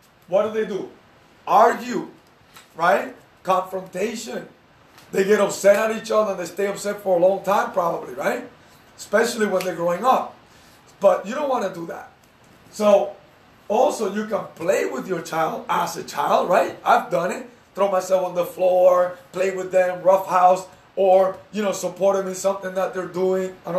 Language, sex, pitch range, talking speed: English, male, 185-210 Hz, 180 wpm